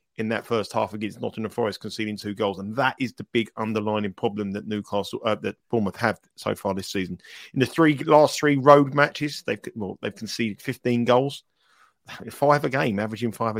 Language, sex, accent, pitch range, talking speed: English, male, British, 110-140 Hz, 200 wpm